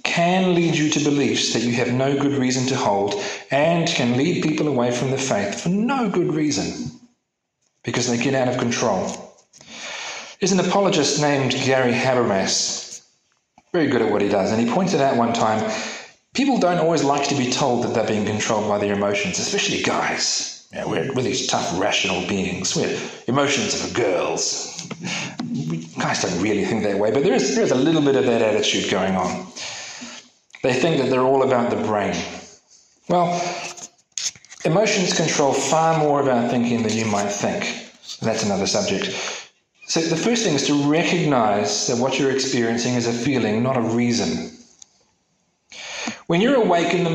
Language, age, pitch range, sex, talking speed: English, 40-59, 120-170 Hz, male, 175 wpm